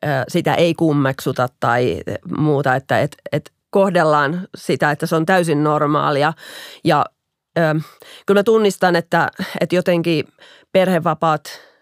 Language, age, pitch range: Finnish, 30-49, 155-190 Hz